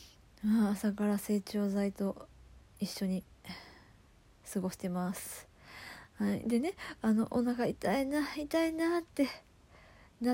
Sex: female